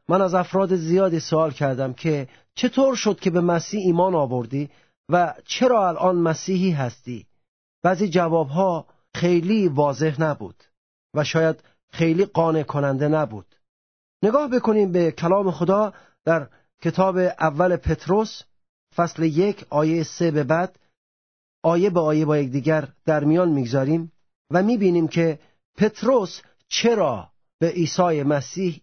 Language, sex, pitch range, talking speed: Persian, male, 150-190 Hz, 125 wpm